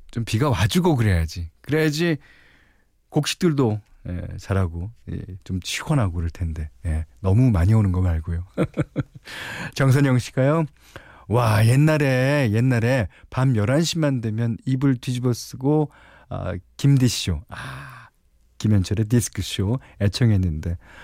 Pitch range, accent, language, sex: 95-140 Hz, native, Korean, male